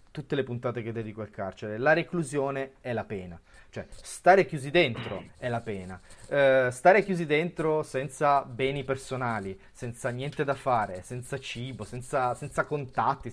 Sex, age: male, 30-49